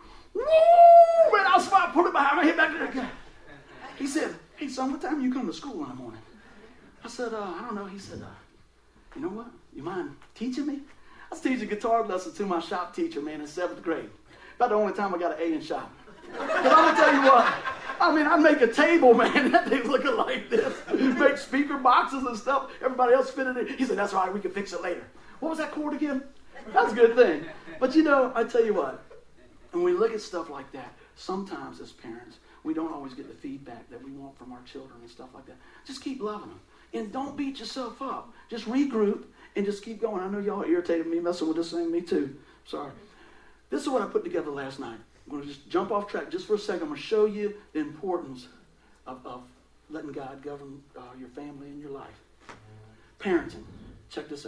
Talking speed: 235 wpm